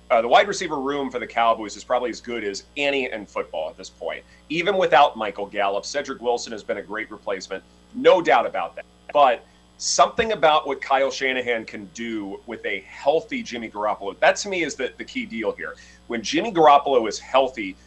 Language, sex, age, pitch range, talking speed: English, male, 30-49, 105-180 Hz, 205 wpm